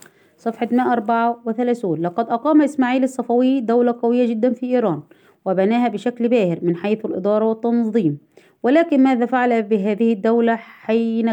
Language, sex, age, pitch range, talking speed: Arabic, female, 20-39, 200-235 Hz, 125 wpm